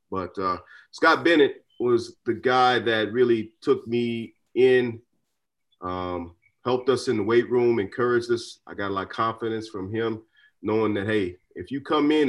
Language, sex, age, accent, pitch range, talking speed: English, male, 30-49, American, 95-115 Hz, 175 wpm